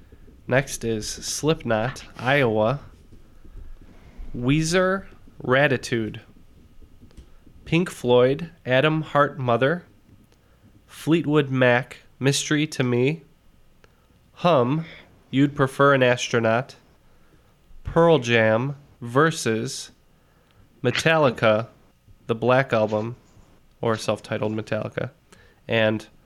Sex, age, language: male, 20-39, English